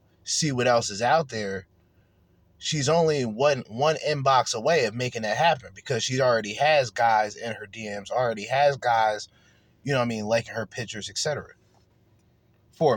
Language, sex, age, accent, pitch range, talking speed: English, male, 20-39, American, 105-145 Hz, 170 wpm